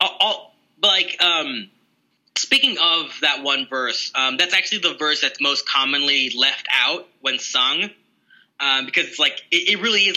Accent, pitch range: American, 130-165 Hz